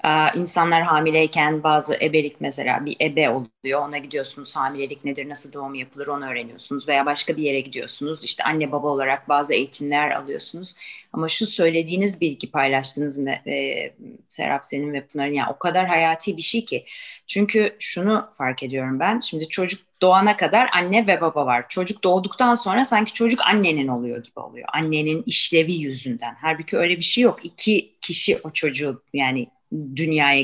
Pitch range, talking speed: 145-205 Hz, 160 wpm